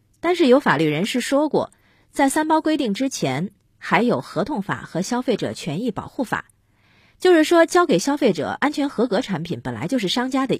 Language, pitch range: Chinese, 155-260 Hz